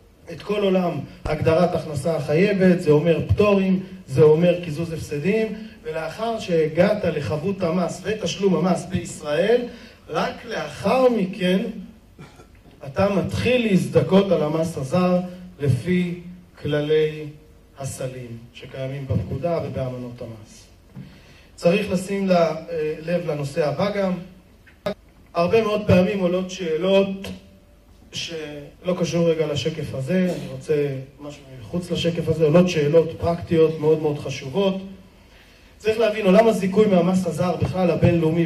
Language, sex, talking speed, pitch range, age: Hebrew, male, 110 wpm, 150-185 Hz, 30-49